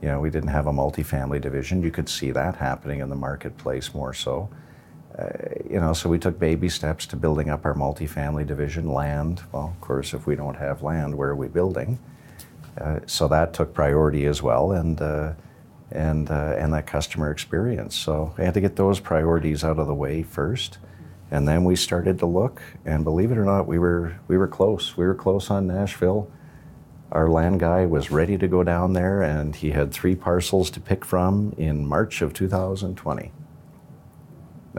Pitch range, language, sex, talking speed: 75-90 Hz, English, male, 195 wpm